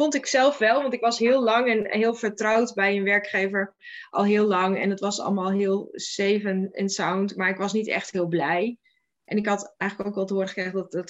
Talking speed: 245 wpm